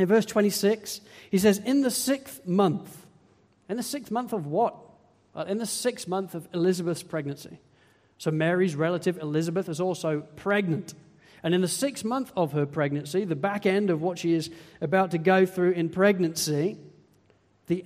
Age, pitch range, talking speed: 40-59, 160-205 Hz, 170 wpm